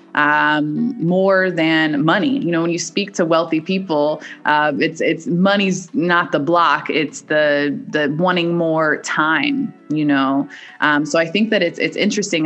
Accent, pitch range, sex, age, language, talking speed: American, 150-175 Hz, female, 20-39, English, 170 wpm